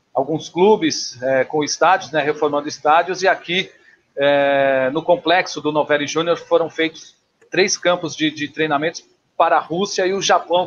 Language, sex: Portuguese, male